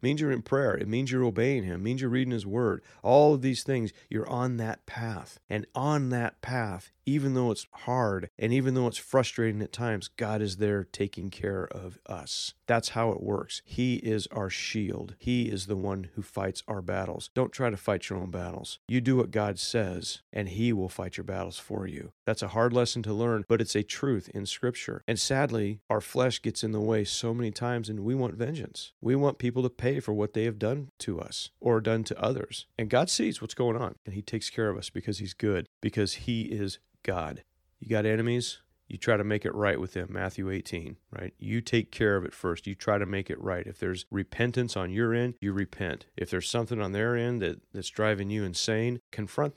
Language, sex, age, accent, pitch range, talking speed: English, male, 40-59, American, 95-120 Hz, 225 wpm